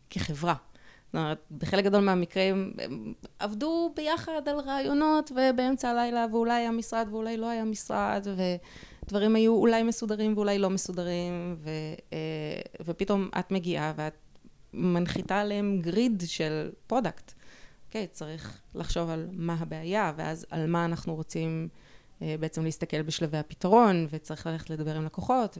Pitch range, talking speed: 155-205 Hz, 135 wpm